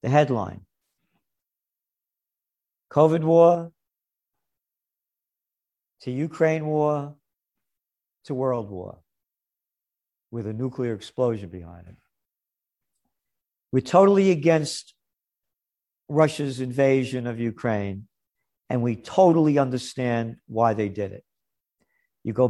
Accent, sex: American, male